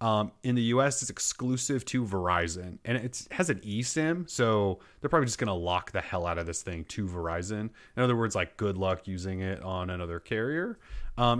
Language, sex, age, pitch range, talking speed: English, male, 30-49, 90-115 Hz, 215 wpm